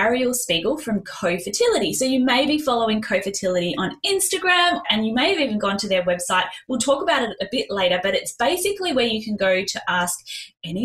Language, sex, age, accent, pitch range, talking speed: English, female, 10-29, Australian, 195-280 Hz, 210 wpm